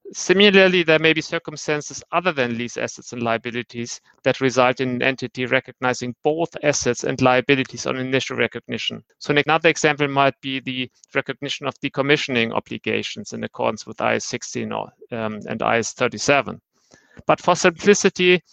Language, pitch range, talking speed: English, 130-165 Hz, 140 wpm